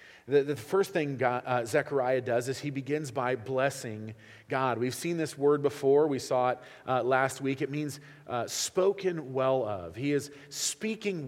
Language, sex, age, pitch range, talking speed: English, male, 40-59, 130-170 Hz, 175 wpm